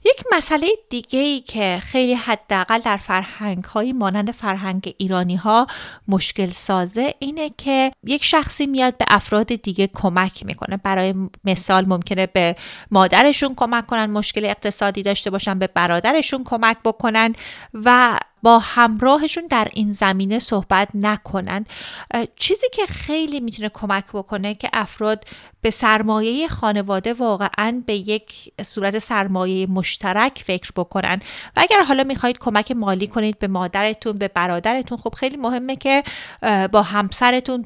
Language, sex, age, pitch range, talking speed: Persian, female, 30-49, 195-245 Hz, 135 wpm